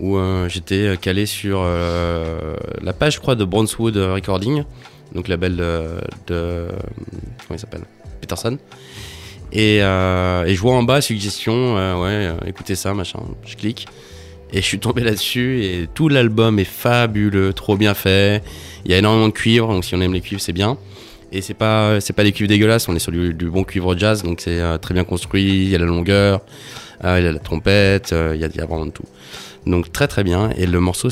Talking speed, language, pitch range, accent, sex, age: 220 wpm, English, 90-105 Hz, French, male, 20-39